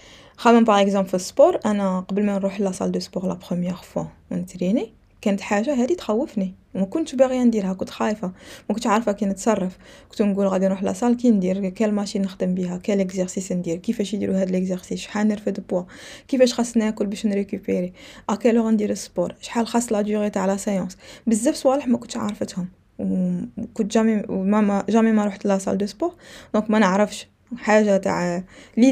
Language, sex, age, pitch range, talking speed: Arabic, female, 20-39, 190-230 Hz, 185 wpm